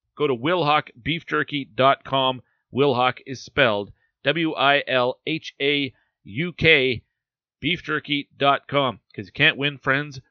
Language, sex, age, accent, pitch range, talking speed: English, male, 40-59, American, 115-145 Hz, 75 wpm